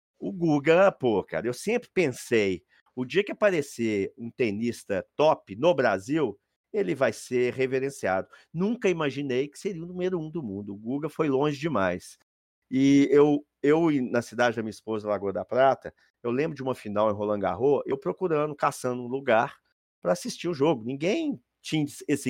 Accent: Brazilian